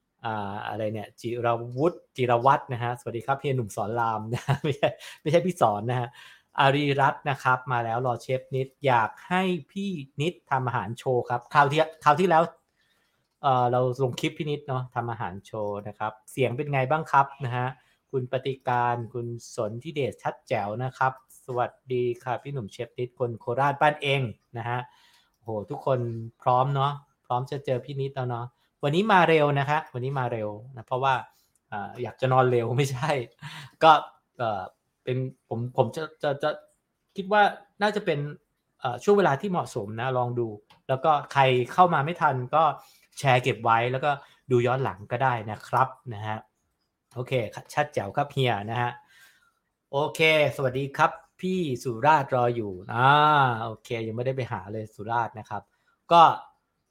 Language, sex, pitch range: English, male, 120-145 Hz